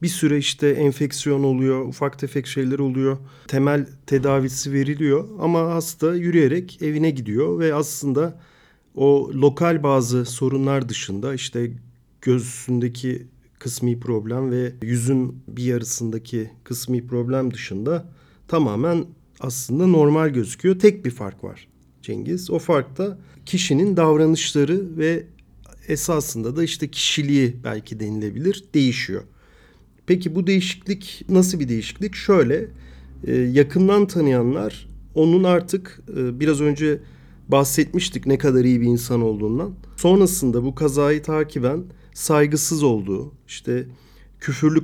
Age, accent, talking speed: 40-59, native, 115 wpm